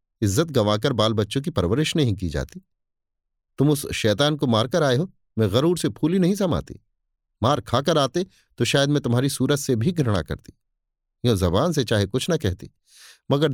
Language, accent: Hindi, native